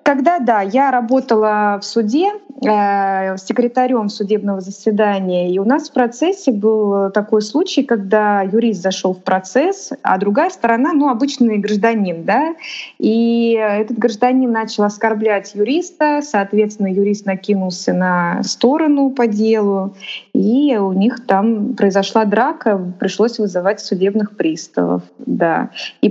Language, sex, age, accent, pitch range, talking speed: Russian, female, 20-39, native, 205-255 Hz, 125 wpm